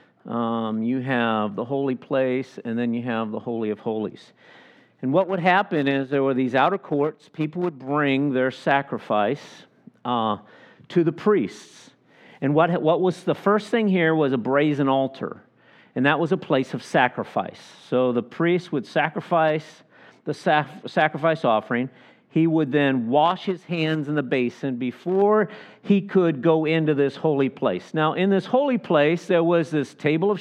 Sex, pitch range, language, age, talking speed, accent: male, 135-170 Hz, English, 50-69, 175 wpm, American